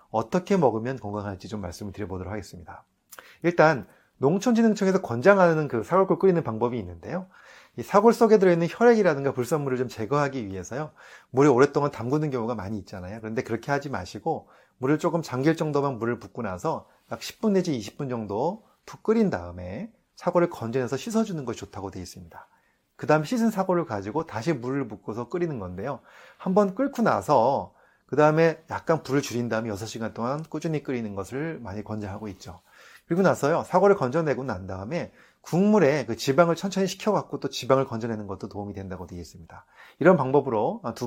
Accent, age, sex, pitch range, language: native, 30-49, male, 105-170 Hz, Korean